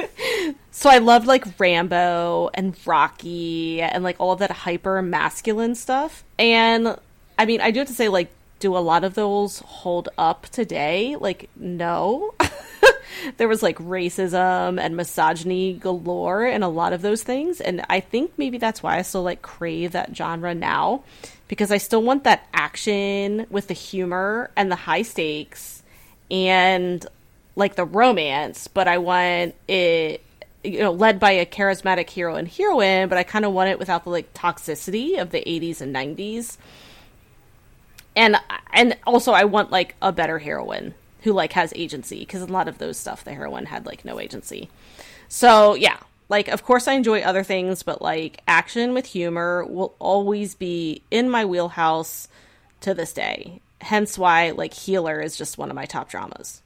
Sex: female